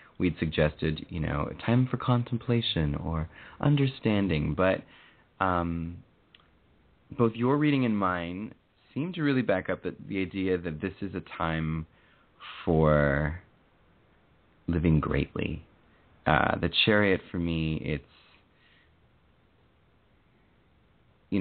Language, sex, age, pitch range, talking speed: English, male, 30-49, 80-110 Hz, 110 wpm